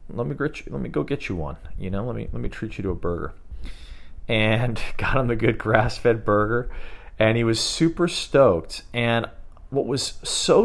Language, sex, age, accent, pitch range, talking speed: English, male, 40-59, American, 95-120 Hz, 215 wpm